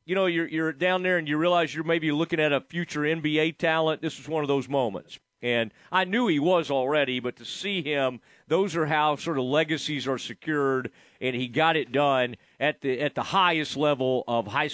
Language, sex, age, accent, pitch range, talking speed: English, male, 40-59, American, 125-155 Hz, 220 wpm